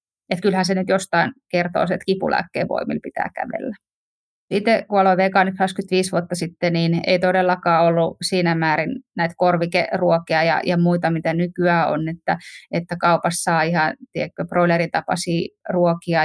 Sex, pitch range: female, 175-235 Hz